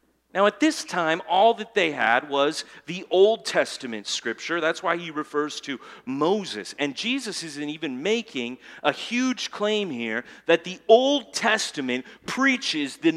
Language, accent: English, American